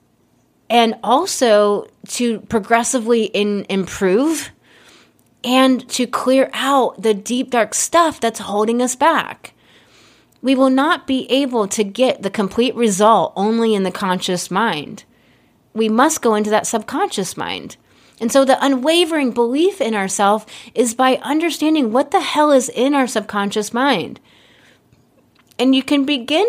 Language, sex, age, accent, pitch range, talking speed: English, female, 30-49, American, 200-260 Hz, 140 wpm